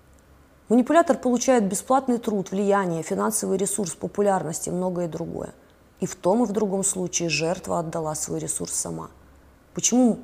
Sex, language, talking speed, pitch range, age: female, Russian, 140 wpm, 165-220 Hz, 20-39